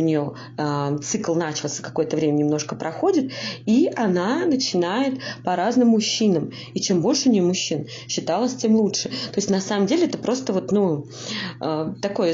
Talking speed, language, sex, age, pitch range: 170 wpm, Russian, female, 20-39, 170-230 Hz